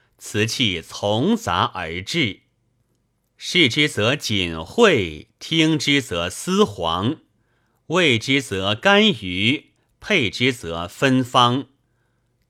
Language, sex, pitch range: Chinese, male, 105-140 Hz